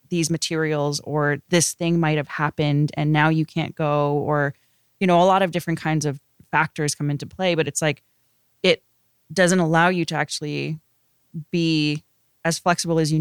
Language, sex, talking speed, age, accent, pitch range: English, female, 180 wpm, 20-39, American, 145-170 Hz